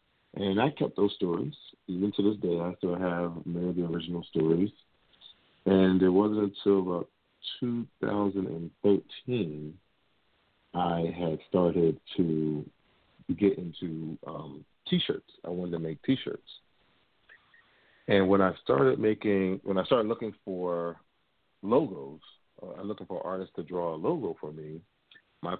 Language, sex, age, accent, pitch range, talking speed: English, male, 40-59, American, 85-100 Hz, 135 wpm